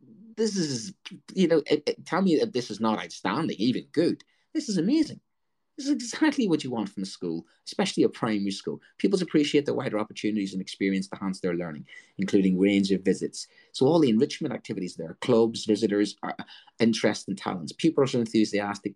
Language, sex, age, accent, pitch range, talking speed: English, male, 30-49, British, 100-155 Hz, 185 wpm